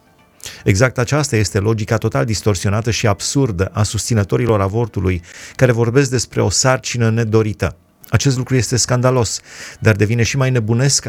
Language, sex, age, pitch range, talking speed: Romanian, male, 30-49, 105-130 Hz, 140 wpm